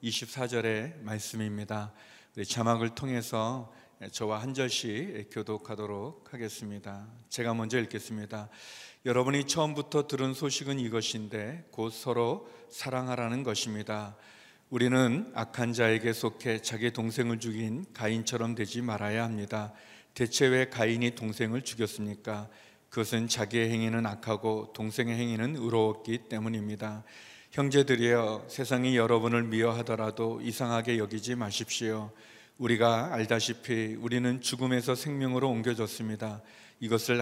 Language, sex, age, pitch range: Korean, male, 40-59, 110-125 Hz